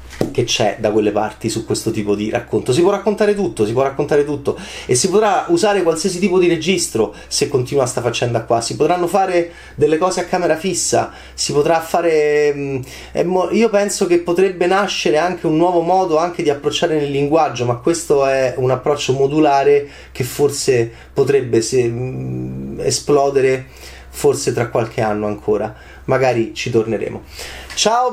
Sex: male